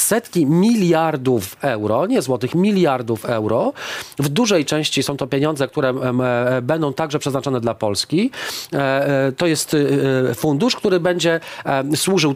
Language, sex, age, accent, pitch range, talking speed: Polish, male, 40-59, native, 135-170 Hz, 120 wpm